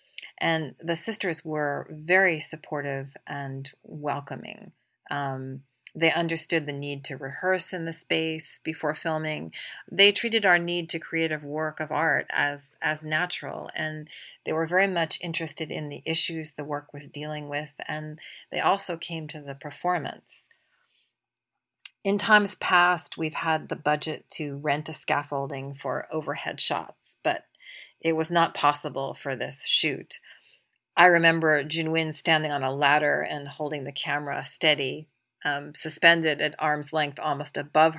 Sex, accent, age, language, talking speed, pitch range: female, American, 40-59, English, 150 wpm, 145-170 Hz